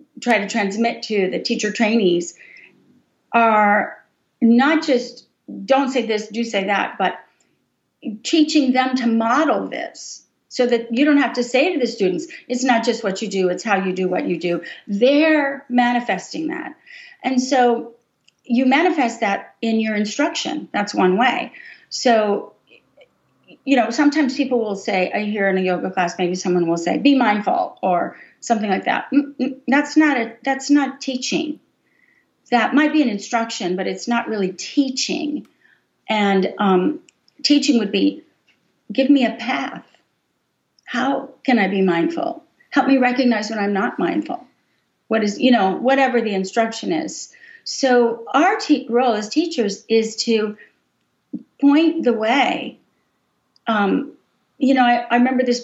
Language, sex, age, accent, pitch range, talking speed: English, female, 40-59, American, 215-280 Hz, 155 wpm